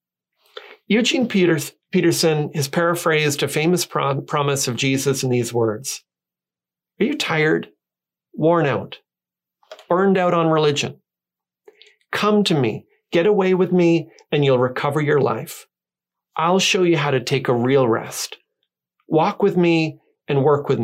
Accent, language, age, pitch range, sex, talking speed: American, English, 40-59, 135-185 Hz, male, 140 wpm